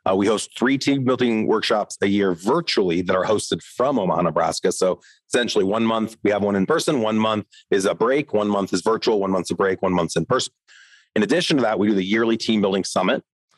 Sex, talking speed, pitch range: male, 235 wpm, 95-115 Hz